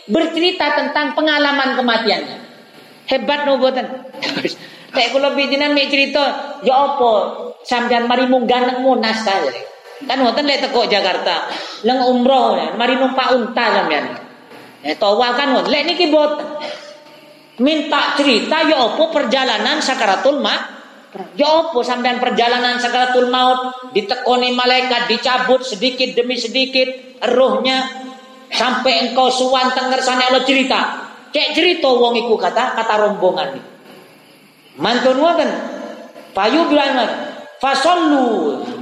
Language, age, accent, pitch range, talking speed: Indonesian, 40-59, native, 240-275 Hz, 85 wpm